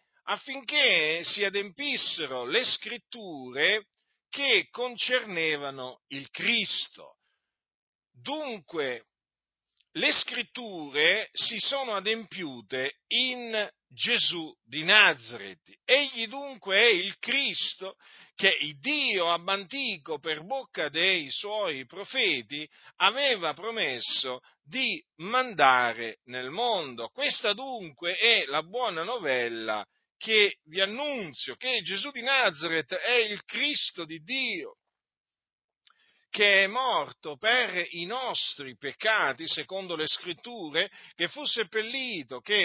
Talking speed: 100 wpm